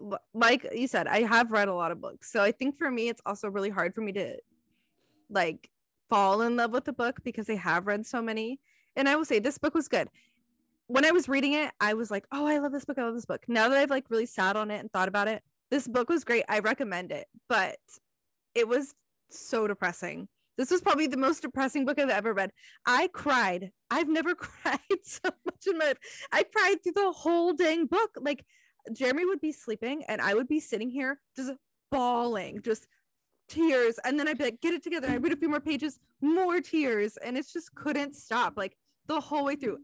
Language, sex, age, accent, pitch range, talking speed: English, female, 20-39, American, 230-300 Hz, 230 wpm